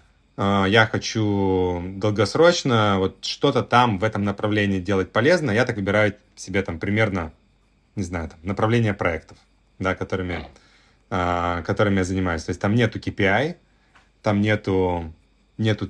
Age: 30-49